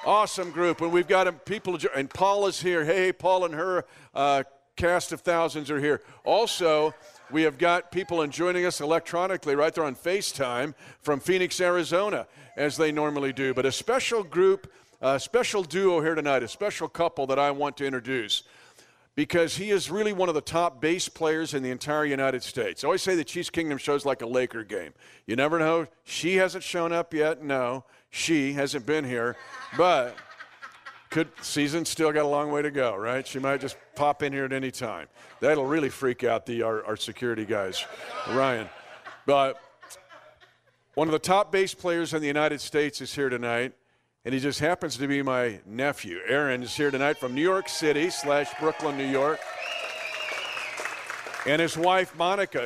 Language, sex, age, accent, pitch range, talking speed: English, male, 50-69, American, 135-175 Hz, 185 wpm